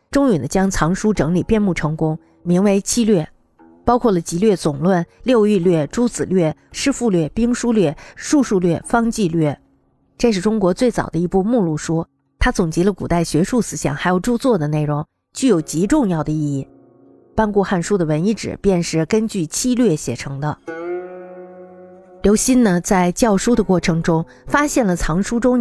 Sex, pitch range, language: female, 165-220 Hz, Chinese